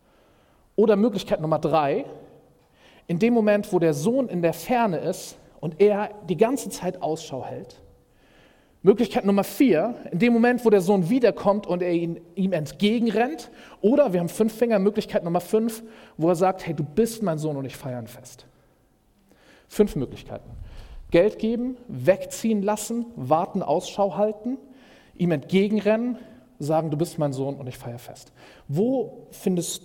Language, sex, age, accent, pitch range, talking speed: German, male, 40-59, German, 150-210 Hz, 155 wpm